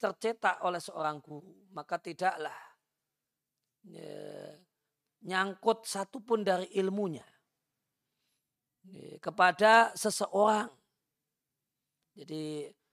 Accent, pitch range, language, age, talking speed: native, 165-220 Hz, Indonesian, 40-59, 70 wpm